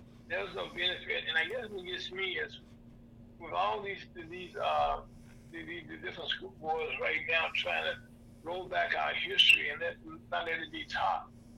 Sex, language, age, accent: male, English, 60-79, American